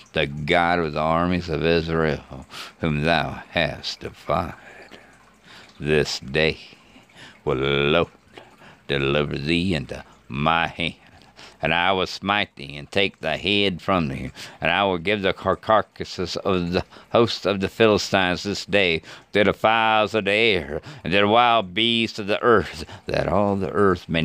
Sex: male